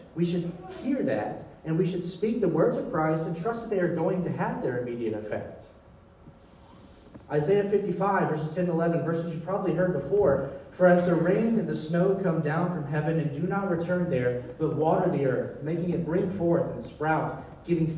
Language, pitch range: English, 140-180 Hz